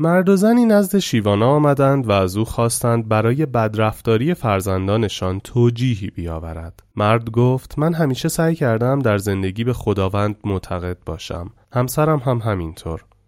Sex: male